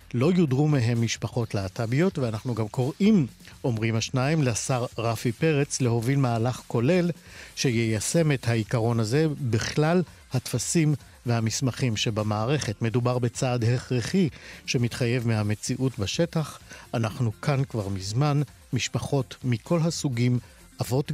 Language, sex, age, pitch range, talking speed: Hebrew, male, 50-69, 115-145 Hz, 110 wpm